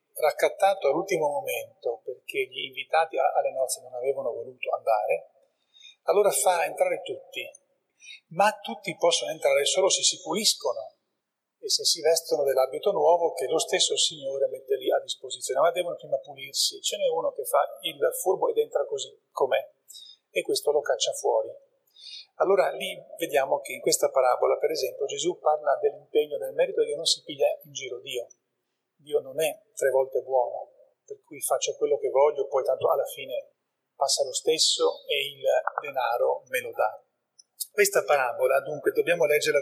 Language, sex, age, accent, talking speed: Italian, male, 40-59, native, 160 wpm